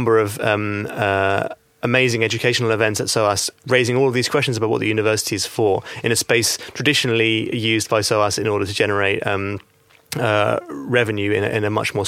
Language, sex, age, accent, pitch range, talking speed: English, male, 30-49, British, 100-115 Hz, 195 wpm